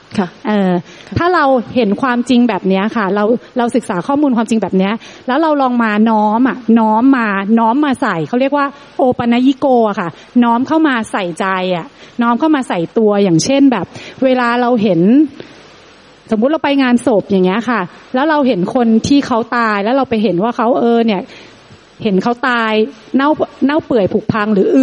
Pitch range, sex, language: 200-265 Hz, female, Thai